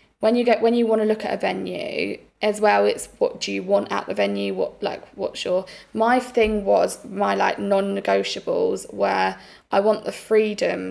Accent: British